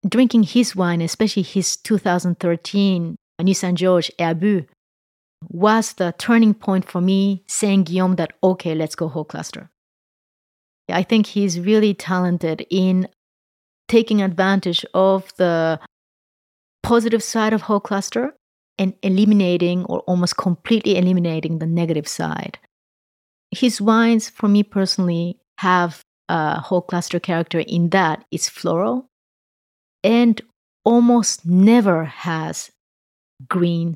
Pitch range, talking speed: 170-210 Hz, 115 wpm